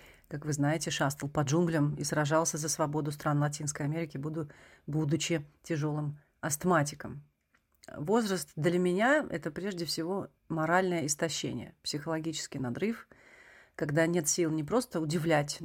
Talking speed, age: 125 wpm, 40-59